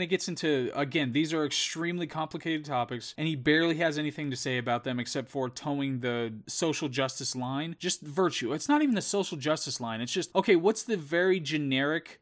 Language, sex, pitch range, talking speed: English, male, 130-165 Hz, 200 wpm